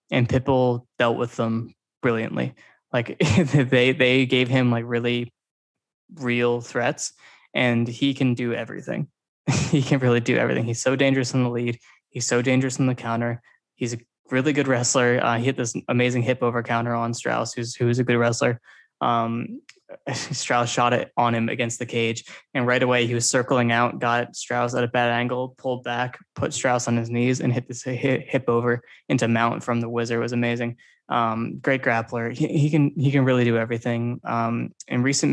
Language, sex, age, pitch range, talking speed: English, male, 20-39, 120-130 Hz, 195 wpm